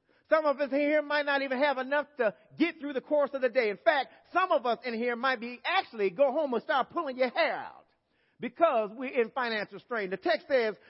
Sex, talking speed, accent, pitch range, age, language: male, 240 wpm, American, 235-315 Hz, 40-59, English